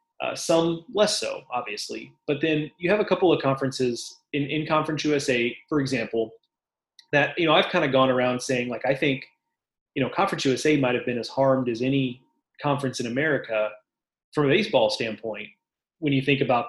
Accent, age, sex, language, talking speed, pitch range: American, 30-49, male, English, 185 wpm, 130-165 Hz